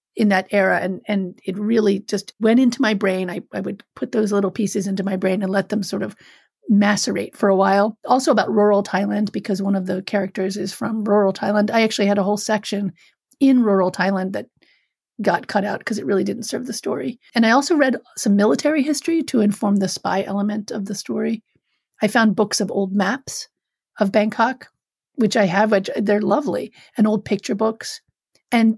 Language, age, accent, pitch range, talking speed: English, 40-59, American, 200-230 Hz, 205 wpm